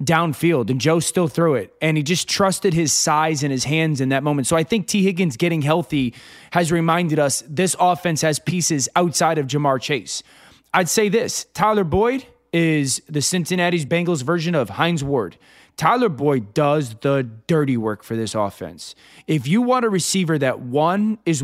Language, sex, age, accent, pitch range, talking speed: English, male, 20-39, American, 150-190 Hz, 185 wpm